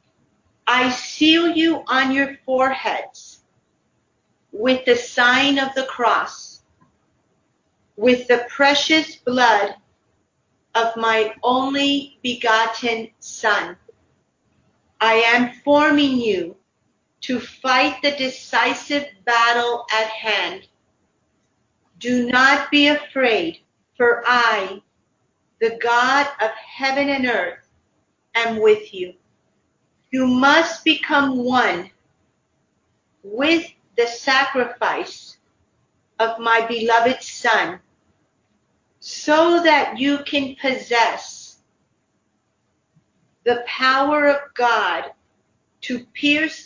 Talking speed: 90 wpm